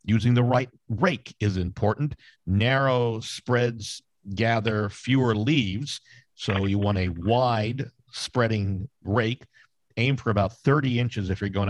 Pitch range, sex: 105-130 Hz, male